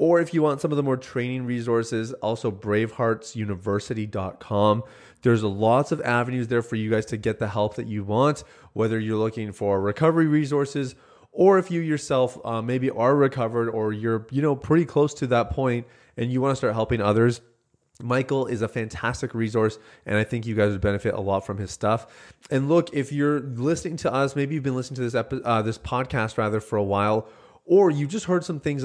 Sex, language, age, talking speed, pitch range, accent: male, English, 30-49, 210 wpm, 110-135 Hz, American